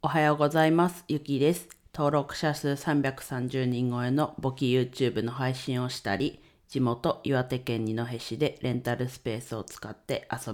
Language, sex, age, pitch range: Japanese, female, 40-59, 95-140 Hz